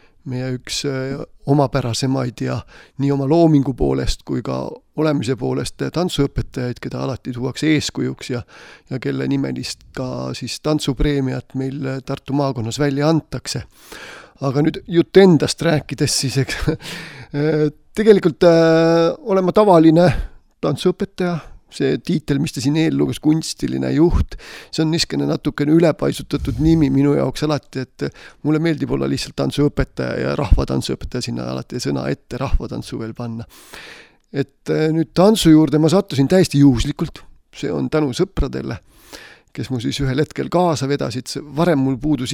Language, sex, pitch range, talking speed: English, male, 130-160 Hz, 135 wpm